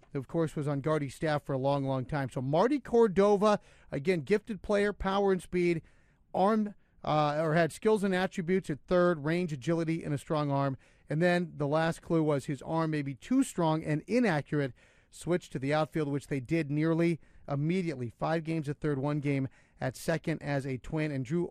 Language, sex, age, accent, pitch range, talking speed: English, male, 40-59, American, 150-200 Hz, 200 wpm